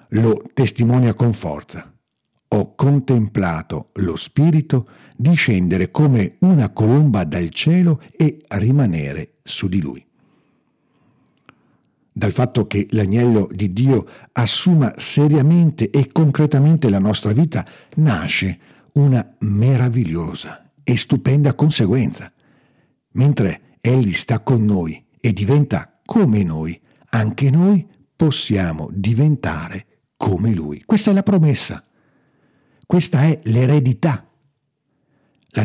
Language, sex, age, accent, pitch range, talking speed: Italian, male, 50-69, native, 105-150 Hz, 105 wpm